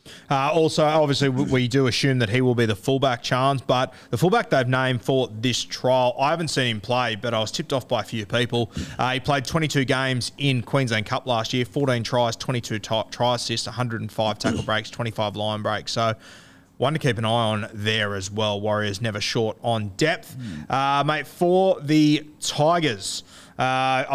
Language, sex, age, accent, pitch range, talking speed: English, male, 20-39, Australian, 115-135 Hz, 195 wpm